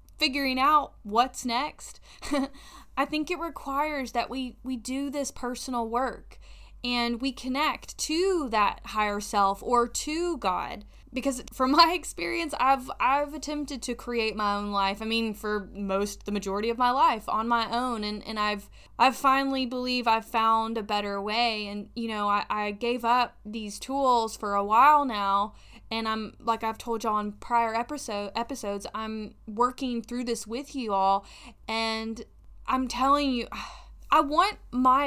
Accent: American